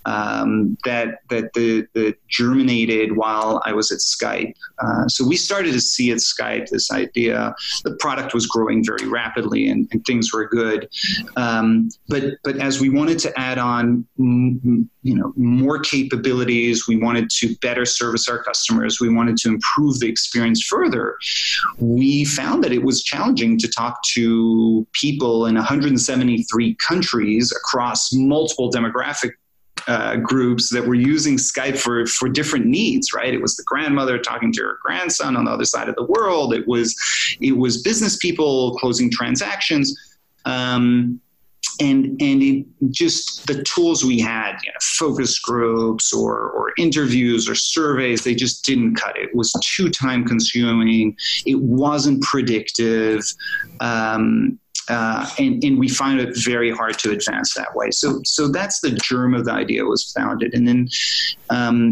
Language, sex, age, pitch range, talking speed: English, male, 30-49, 115-145 Hz, 160 wpm